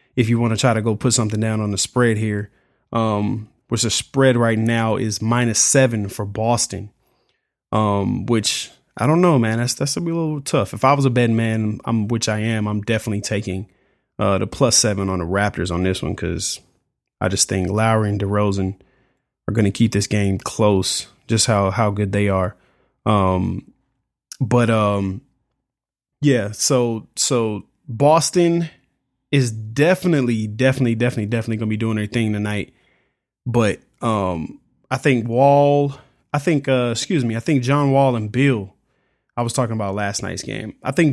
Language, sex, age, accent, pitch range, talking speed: English, male, 20-39, American, 105-130 Hz, 180 wpm